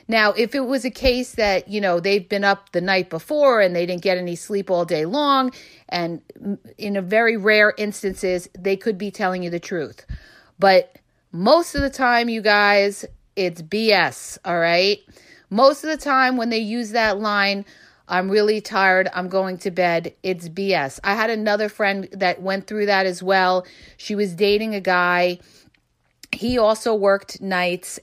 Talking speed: 180 wpm